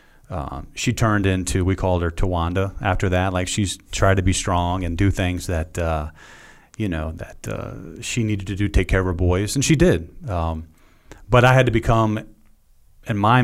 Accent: American